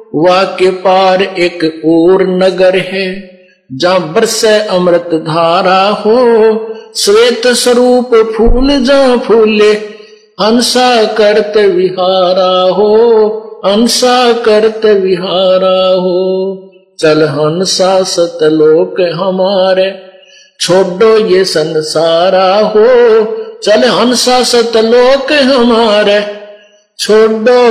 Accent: native